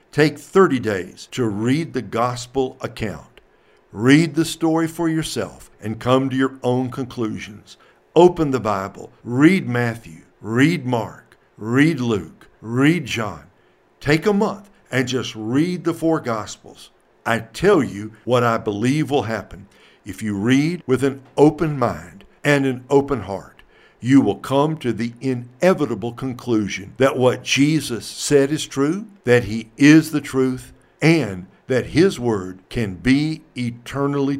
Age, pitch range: 60-79, 115-145 Hz